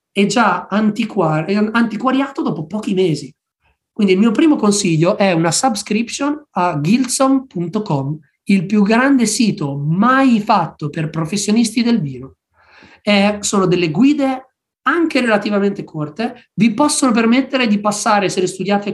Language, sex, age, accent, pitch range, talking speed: Italian, male, 20-39, native, 180-245 Hz, 125 wpm